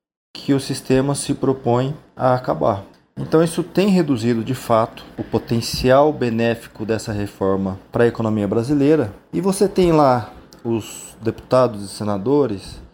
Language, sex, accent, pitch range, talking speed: Portuguese, male, Brazilian, 115-155 Hz, 140 wpm